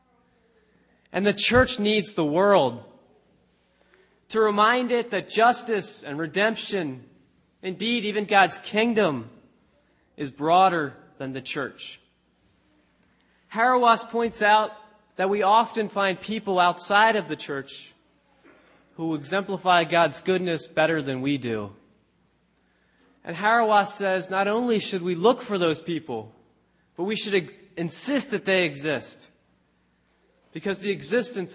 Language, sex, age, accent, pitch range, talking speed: English, male, 30-49, American, 145-210 Hz, 120 wpm